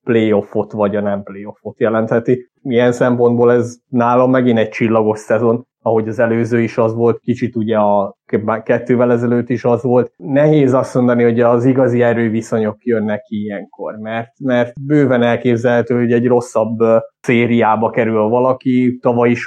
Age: 20-39